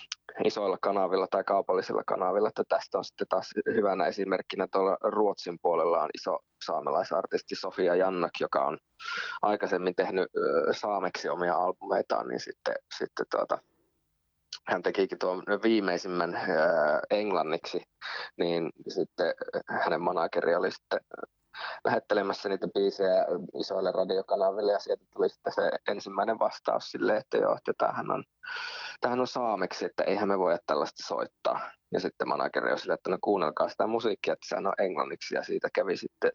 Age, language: 20-39, Finnish